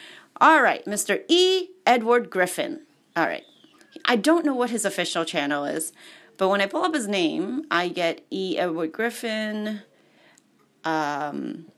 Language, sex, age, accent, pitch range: Japanese, female, 30-49, American, 185-305 Hz